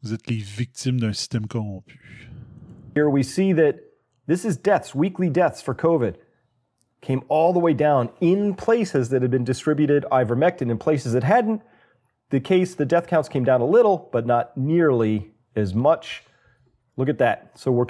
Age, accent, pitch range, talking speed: 40-59, American, 115-165 Hz, 155 wpm